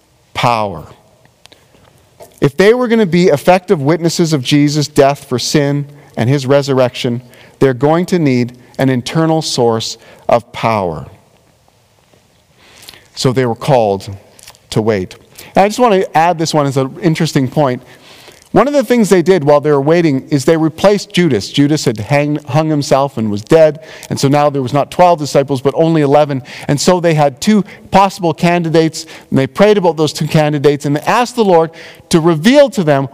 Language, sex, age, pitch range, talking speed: English, male, 40-59, 140-190 Hz, 180 wpm